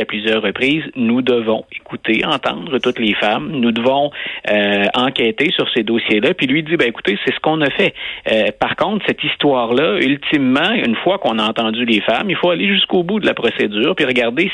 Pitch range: 115-165 Hz